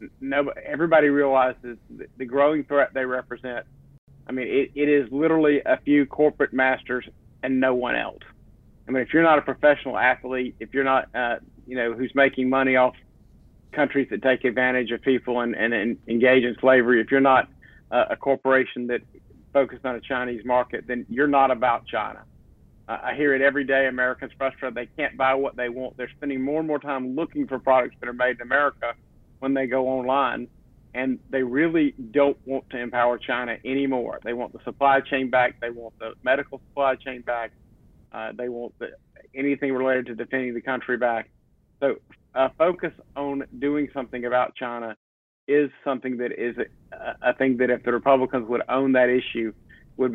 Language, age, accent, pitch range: English, 50-69, American, 125-140 Hz